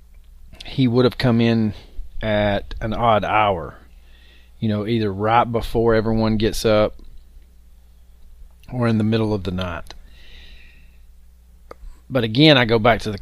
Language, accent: English, American